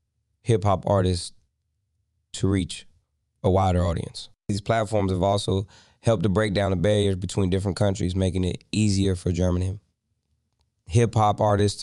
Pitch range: 95-105 Hz